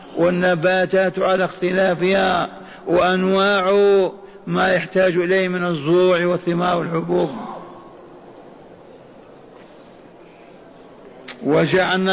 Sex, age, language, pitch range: male, 60-79, Arabic, 180-195 Hz